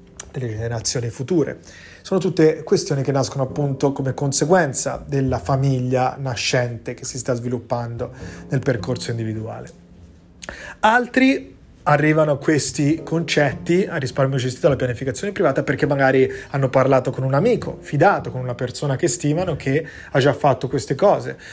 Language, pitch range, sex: Italian, 125-145 Hz, male